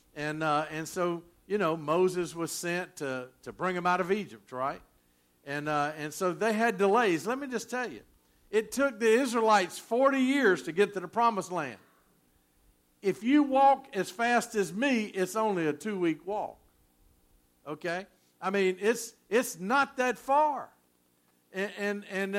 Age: 50-69